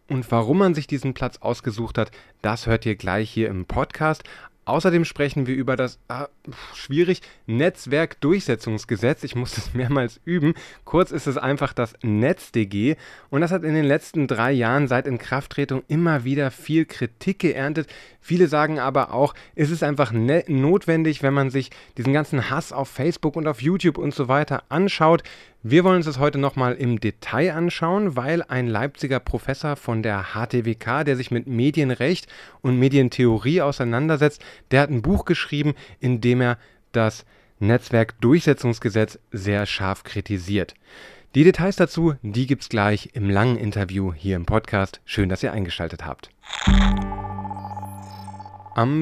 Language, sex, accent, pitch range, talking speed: German, male, German, 115-150 Hz, 155 wpm